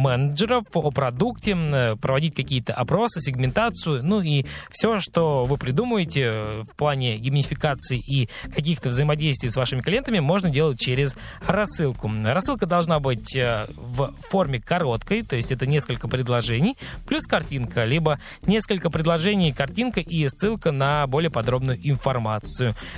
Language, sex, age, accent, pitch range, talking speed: Russian, male, 20-39, native, 125-165 Hz, 130 wpm